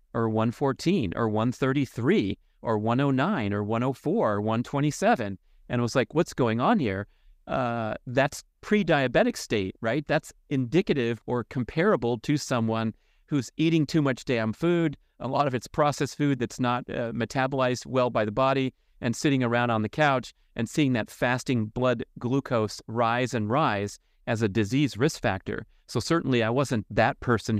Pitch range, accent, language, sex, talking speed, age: 115-140 Hz, American, English, male, 160 wpm, 40-59